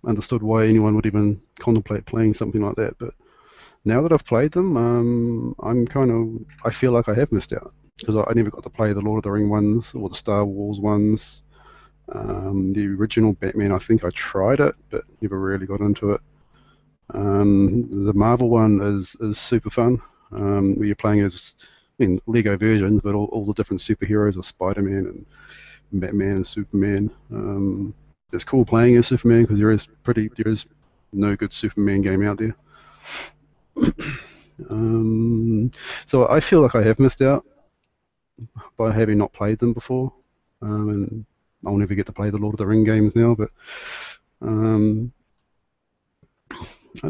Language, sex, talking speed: English, male, 175 wpm